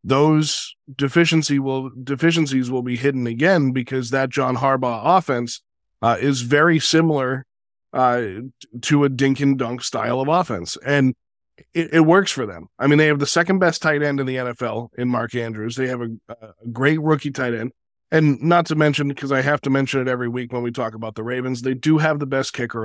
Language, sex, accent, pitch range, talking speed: English, male, American, 125-155 Hz, 205 wpm